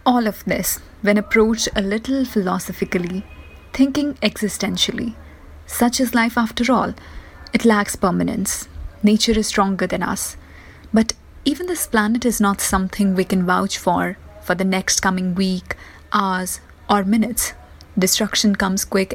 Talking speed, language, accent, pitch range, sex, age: 140 wpm, English, Indian, 190-225 Hz, female, 20-39